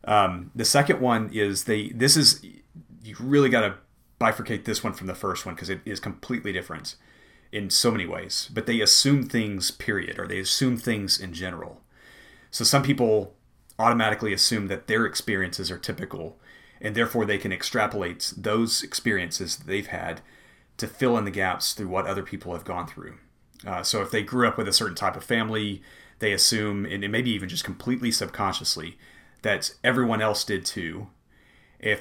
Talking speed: 180 wpm